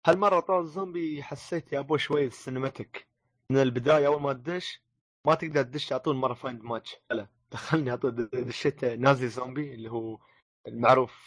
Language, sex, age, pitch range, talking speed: Arabic, male, 20-39, 115-145 Hz, 150 wpm